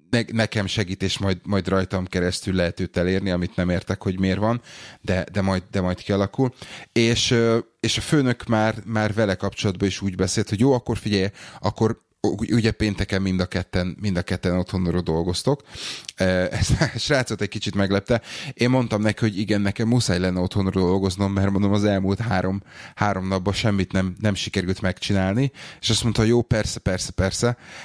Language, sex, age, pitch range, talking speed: Hungarian, male, 30-49, 95-105 Hz, 180 wpm